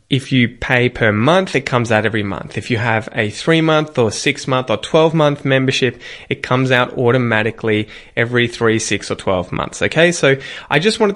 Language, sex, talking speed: English, male, 190 wpm